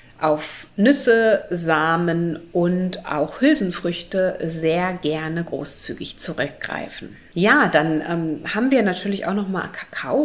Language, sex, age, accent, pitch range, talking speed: German, female, 30-49, German, 165-200 Hz, 115 wpm